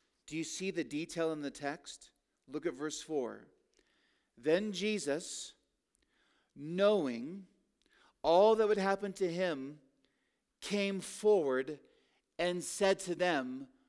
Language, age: English, 40-59